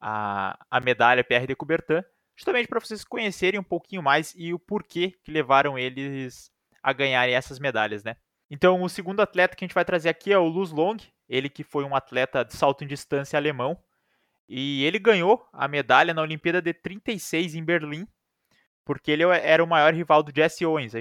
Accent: Brazilian